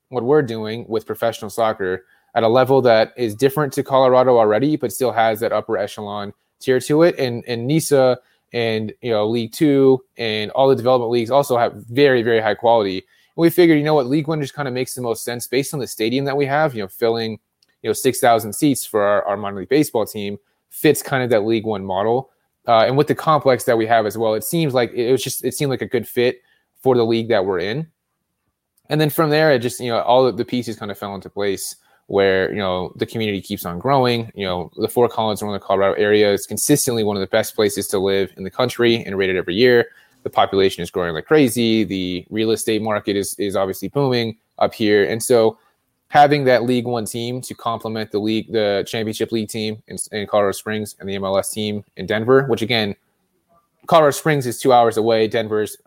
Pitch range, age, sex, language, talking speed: 105-130 Hz, 20-39, male, English, 230 wpm